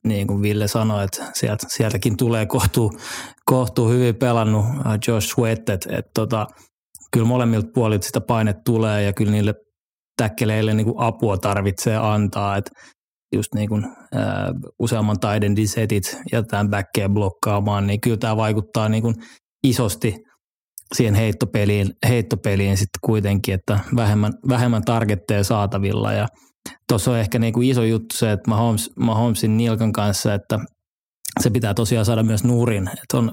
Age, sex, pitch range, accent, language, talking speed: 20-39, male, 105-115 Hz, native, Finnish, 130 wpm